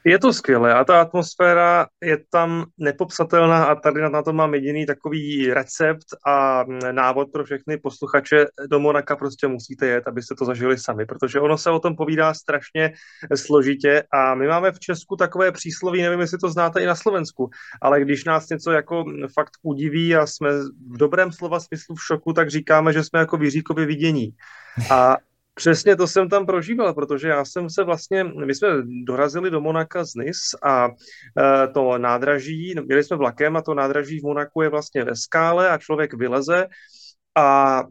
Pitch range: 140-165 Hz